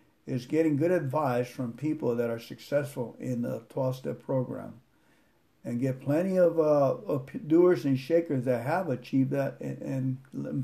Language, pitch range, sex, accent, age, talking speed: English, 130-155 Hz, male, American, 60-79, 165 wpm